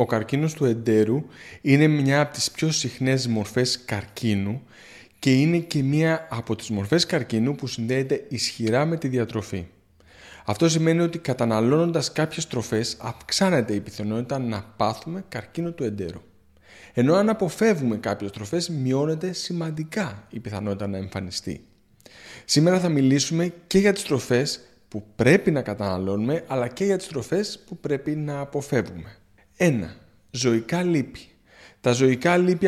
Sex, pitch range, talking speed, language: male, 110-160 Hz, 140 wpm, Greek